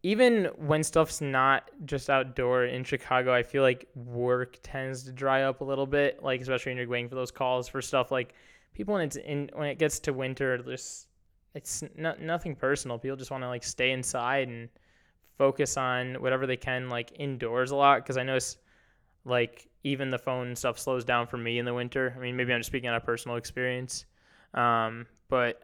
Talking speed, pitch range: 205 wpm, 125-145 Hz